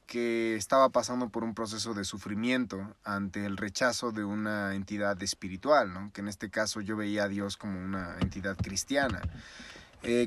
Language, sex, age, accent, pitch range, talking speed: Spanish, male, 30-49, Mexican, 100-125 Hz, 170 wpm